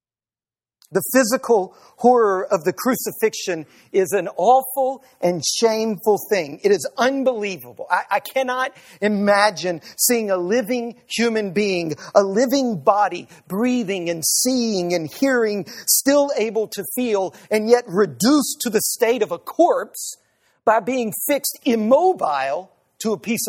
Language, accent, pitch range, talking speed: English, American, 200-275 Hz, 135 wpm